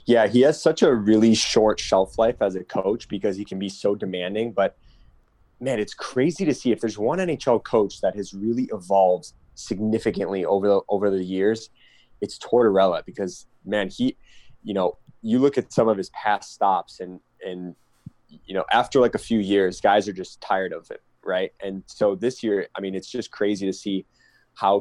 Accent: American